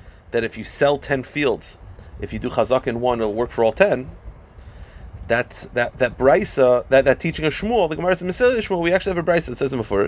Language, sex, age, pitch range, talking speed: English, male, 30-49, 105-145 Hz, 240 wpm